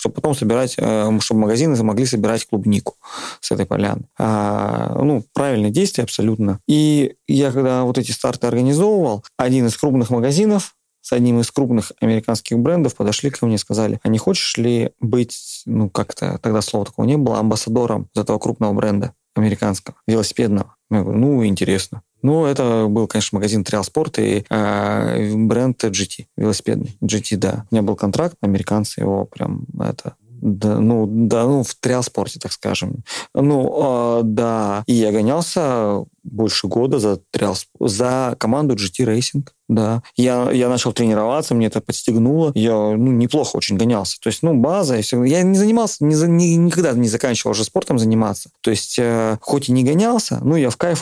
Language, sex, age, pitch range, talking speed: Russian, male, 30-49, 105-130 Hz, 165 wpm